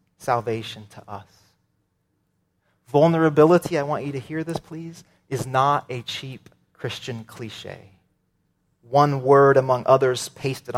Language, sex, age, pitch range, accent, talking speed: English, male, 30-49, 125-165 Hz, American, 120 wpm